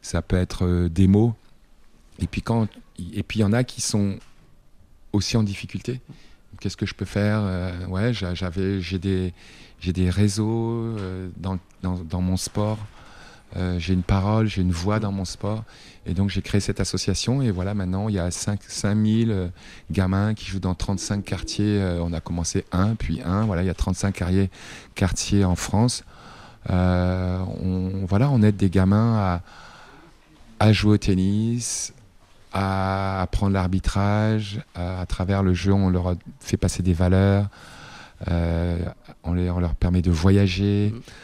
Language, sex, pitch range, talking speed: French, male, 90-105 Hz, 160 wpm